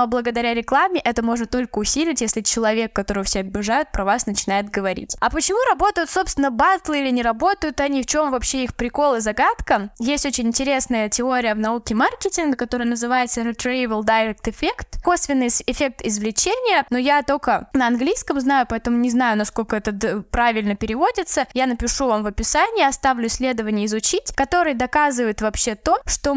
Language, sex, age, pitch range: Russian, female, 10-29, 225-290 Hz